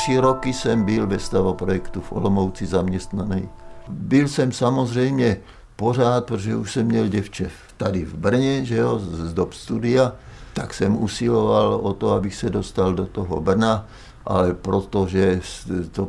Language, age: Czech, 50-69